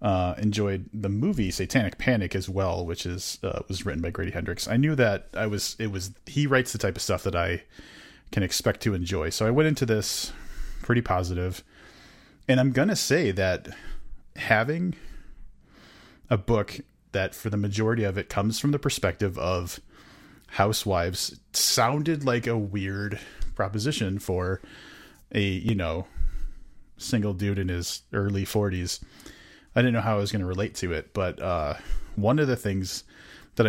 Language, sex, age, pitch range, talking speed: English, male, 30-49, 95-110 Hz, 170 wpm